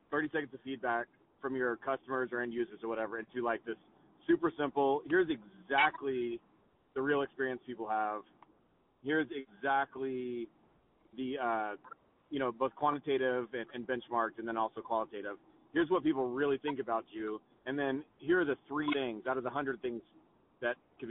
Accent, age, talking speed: American, 30-49, 170 wpm